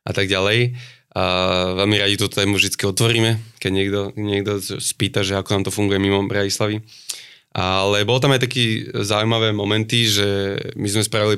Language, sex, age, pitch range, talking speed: Slovak, male, 20-39, 100-115 Hz, 170 wpm